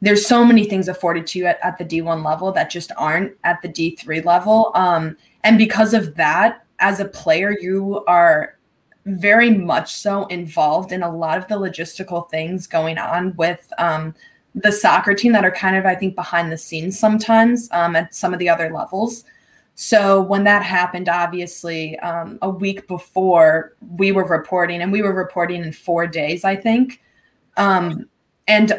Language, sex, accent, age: English, female, American, 20-39